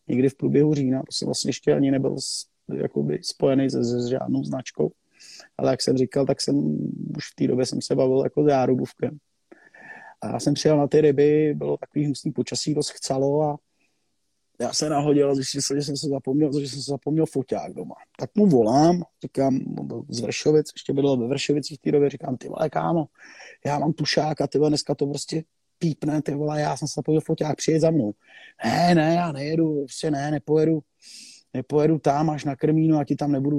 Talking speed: 205 wpm